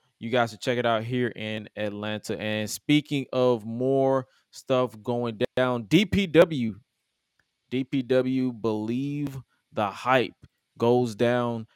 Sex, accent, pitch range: male, American, 110-135 Hz